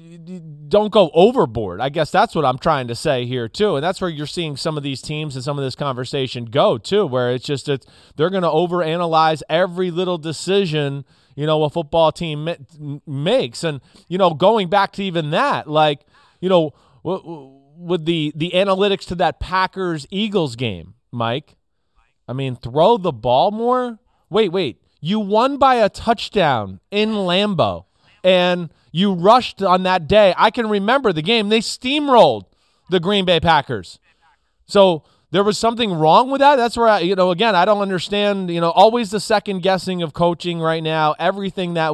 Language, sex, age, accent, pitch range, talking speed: English, male, 30-49, American, 145-200 Hz, 185 wpm